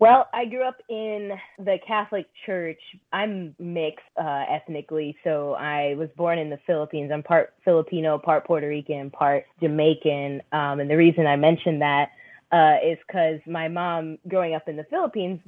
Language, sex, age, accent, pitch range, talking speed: English, female, 20-39, American, 150-175 Hz, 170 wpm